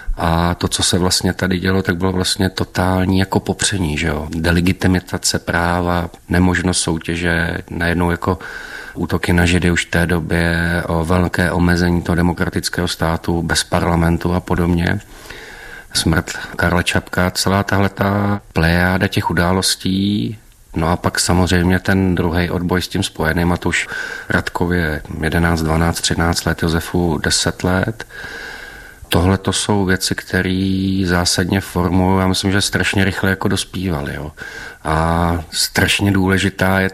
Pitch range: 85-95 Hz